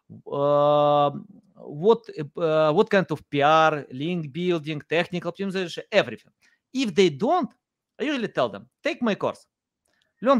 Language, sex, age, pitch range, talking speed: English, male, 30-49, 145-195 Hz, 135 wpm